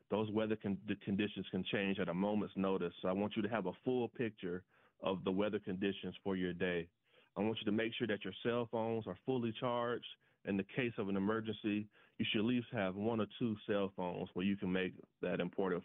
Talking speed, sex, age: 225 wpm, male, 30-49